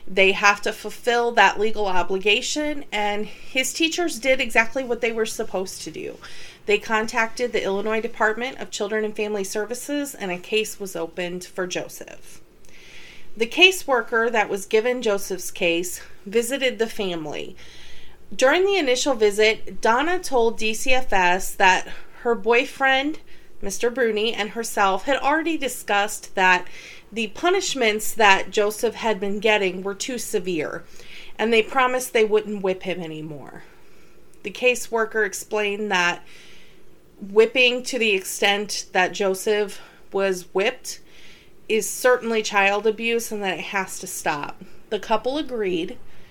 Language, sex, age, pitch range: English, female, 30-49, 195-240 Hz